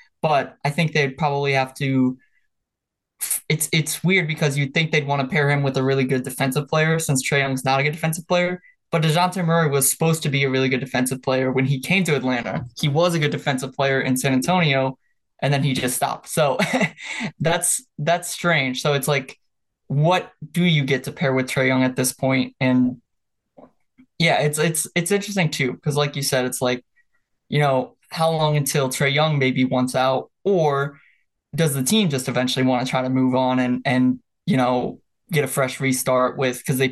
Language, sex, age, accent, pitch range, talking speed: English, male, 20-39, American, 130-160 Hz, 210 wpm